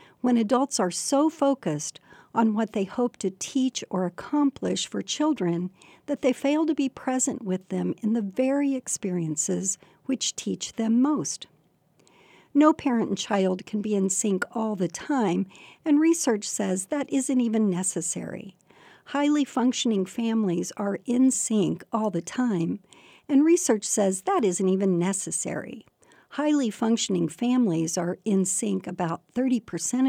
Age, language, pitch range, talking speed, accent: 60-79, English, 185-260 Hz, 145 wpm, American